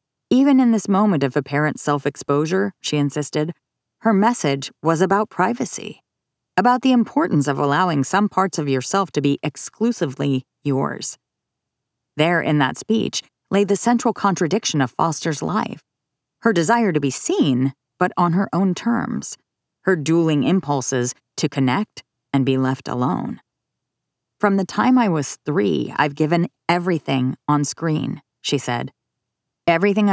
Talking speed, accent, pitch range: 140 wpm, American, 140-195 Hz